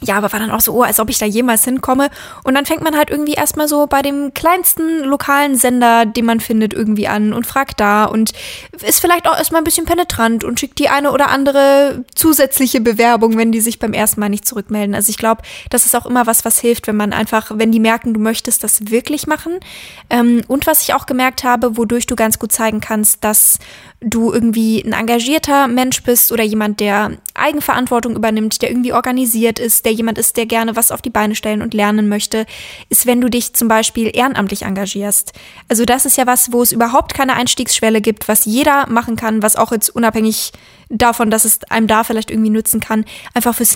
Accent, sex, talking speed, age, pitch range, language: German, female, 215 wpm, 20-39, 215-250 Hz, German